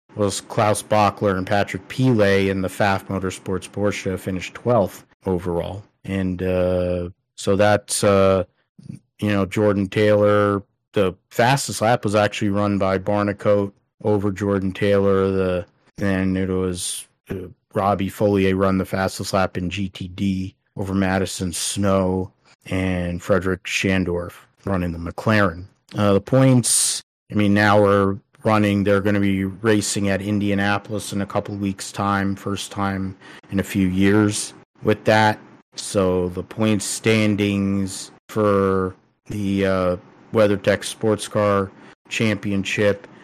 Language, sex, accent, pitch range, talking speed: English, male, American, 95-105 Hz, 130 wpm